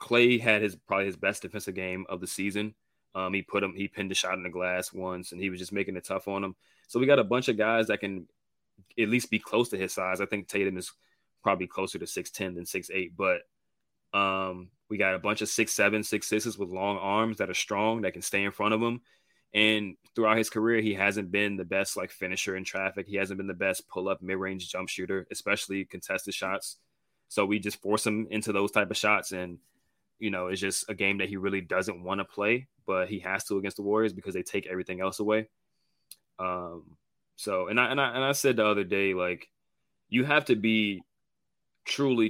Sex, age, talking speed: male, 20-39, 235 wpm